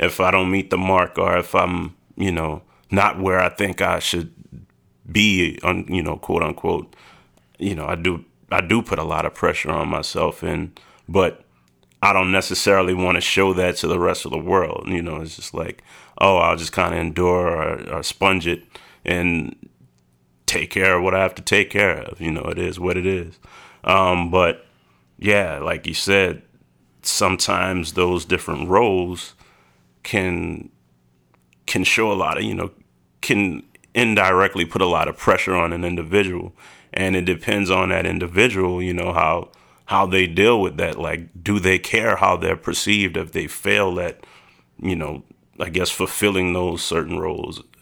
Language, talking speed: English, 180 wpm